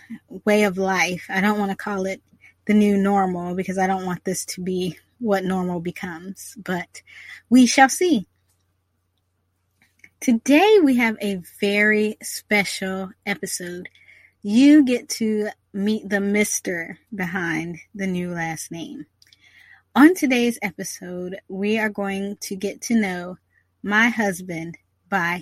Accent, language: American, English